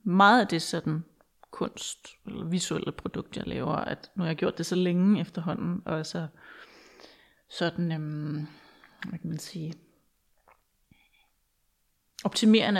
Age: 30-49